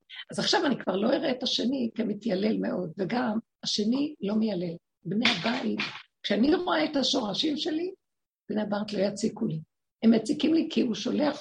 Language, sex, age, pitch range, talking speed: Hebrew, female, 50-69, 225-305 Hz, 170 wpm